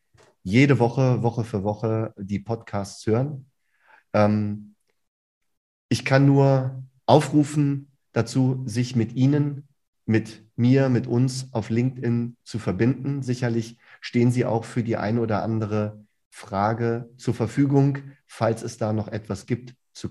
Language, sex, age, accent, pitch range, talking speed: German, male, 40-59, German, 100-120 Hz, 130 wpm